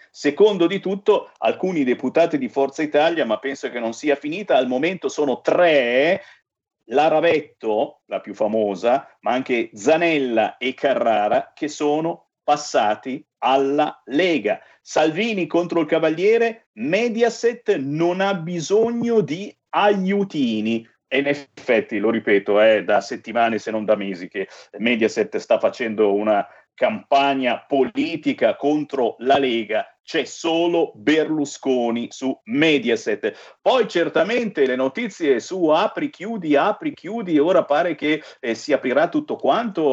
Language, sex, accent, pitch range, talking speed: Italian, male, native, 140-230 Hz, 130 wpm